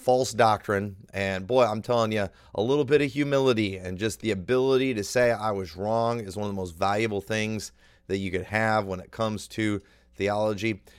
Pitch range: 100-130 Hz